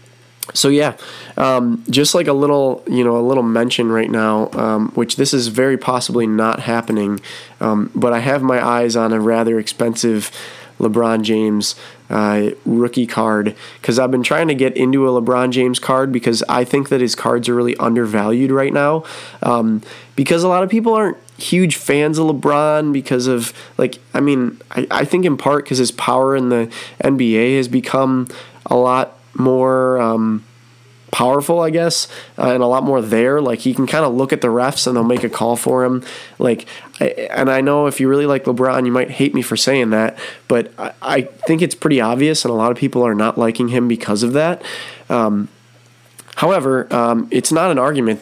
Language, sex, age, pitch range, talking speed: English, male, 20-39, 115-135 Hz, 200 wpm